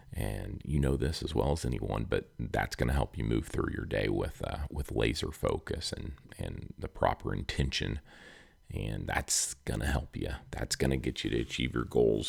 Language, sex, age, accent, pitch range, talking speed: English, male, 40-59, American, 65-90 Hz, 210 wpm